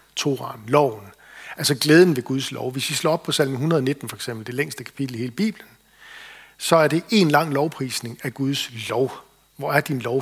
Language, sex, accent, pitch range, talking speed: Danish, male, native, 130-170 Hz, 205 wpm